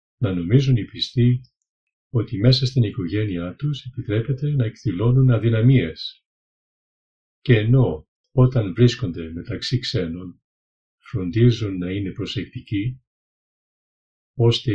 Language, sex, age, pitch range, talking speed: Greek, male, 50-69, 95-130 Hz, 100 wpm